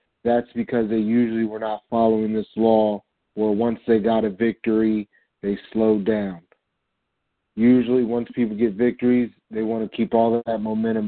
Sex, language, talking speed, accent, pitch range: male, English, 170 wpm, American, 105-120 Hz